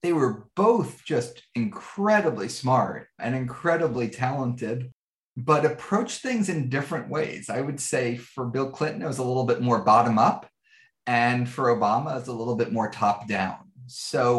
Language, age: English, 30-49